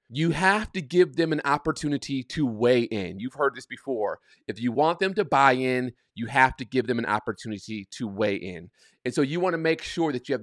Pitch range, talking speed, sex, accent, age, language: 130-175 Hz, 235 wpm, male, American, 30-49, English